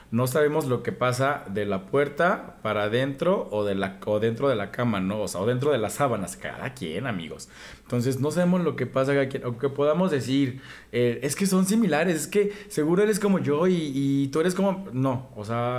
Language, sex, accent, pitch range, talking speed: Spanish, male, Mexican, 120-155 Hz, 220 wpm